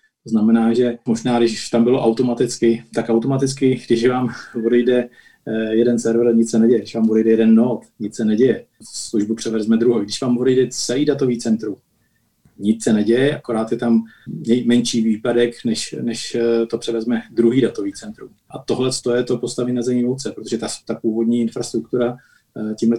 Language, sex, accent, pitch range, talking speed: Czech, male, native, 110-120 Hz, 165 wpm